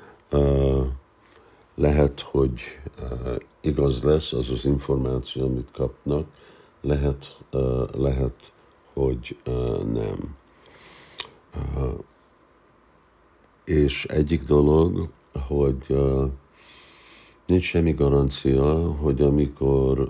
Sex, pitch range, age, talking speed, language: male, 65-70 Hz, 60-79, 85 wpm, Hungarian